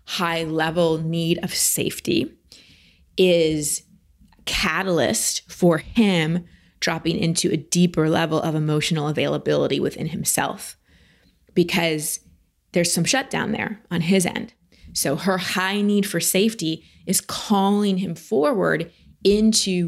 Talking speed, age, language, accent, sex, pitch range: 115 wpm, 20-39, English, American, female, 165-200 Hz